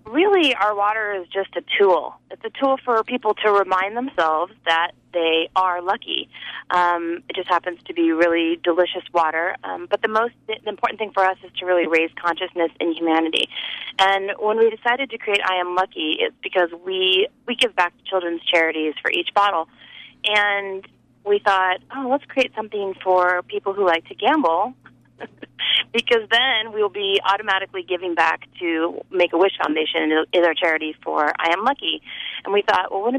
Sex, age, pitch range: female, 30-49, 175-220 Hz